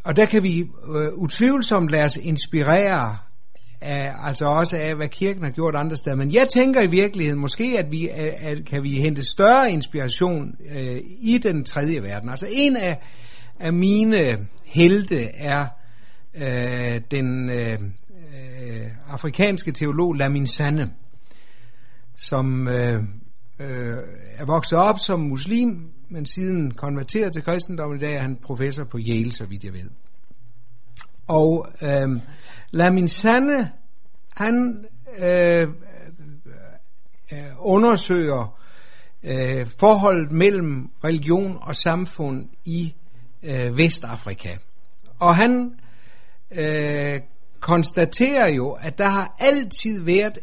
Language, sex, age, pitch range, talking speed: Danish, male, 60-79, 125-175 Hz, 120 wpm